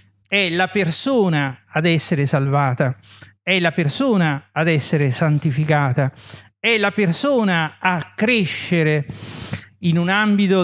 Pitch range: 140-195 Hz